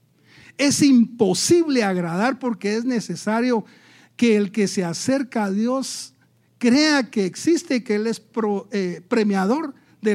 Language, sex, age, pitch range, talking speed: English, male, 60-79, 170-240 Hz, 130 wpm